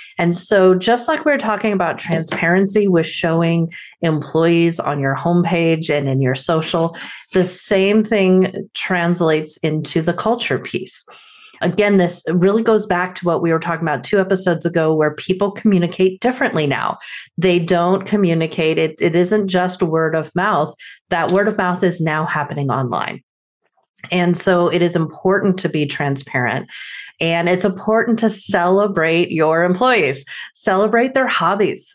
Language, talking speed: English, 150 wpm